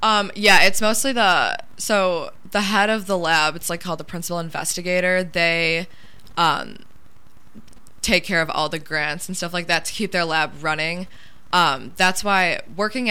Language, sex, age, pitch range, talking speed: English, female, 20-39, 165-195 Hz, 175 wpm